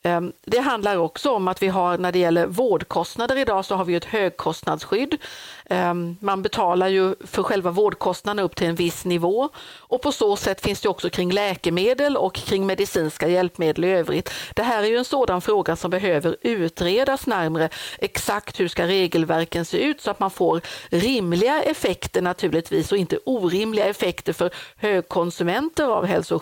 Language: Swedish